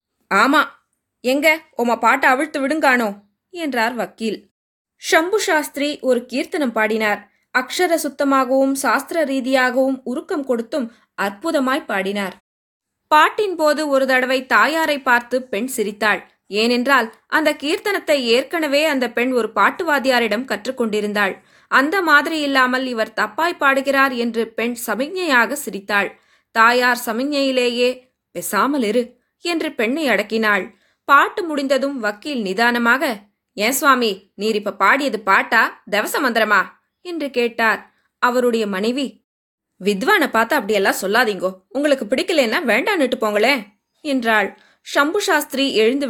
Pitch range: 220-285 Hz